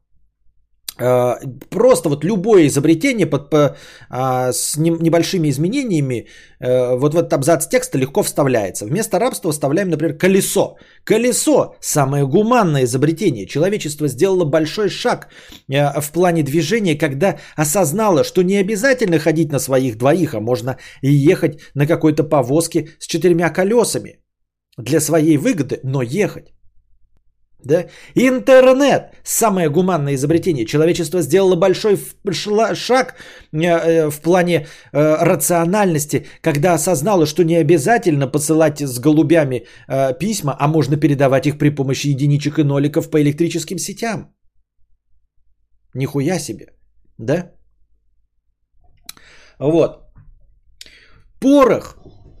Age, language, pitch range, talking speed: 30-49, Bulgarian, 135-180 Hz, 110 wpm